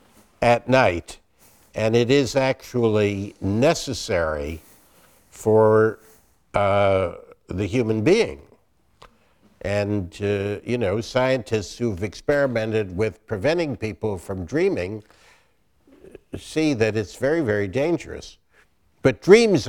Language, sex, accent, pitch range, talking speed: English, male, American, 105-140 Hz, 100 wpm